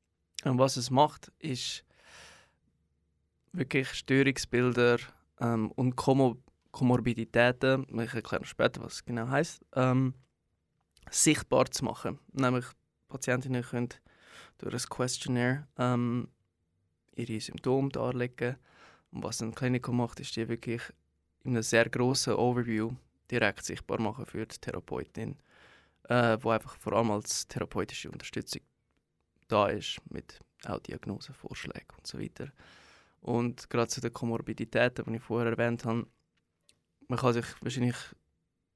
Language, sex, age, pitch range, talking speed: German, male, 20-39, 110-130 Hz, 125 wpm